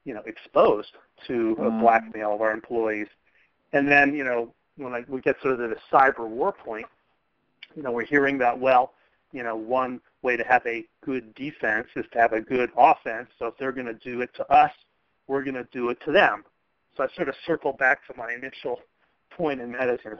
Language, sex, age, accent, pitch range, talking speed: English, male, 40-59, American, 110-130 Hz, 215 wpm